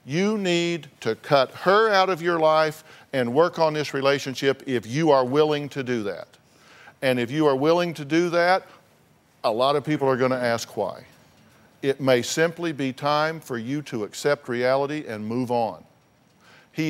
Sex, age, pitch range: male, 50-69, 130-160 Hz